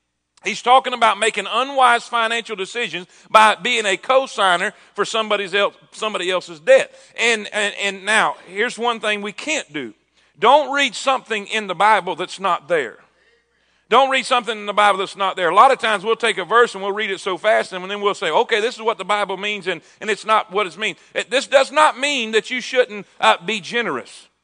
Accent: American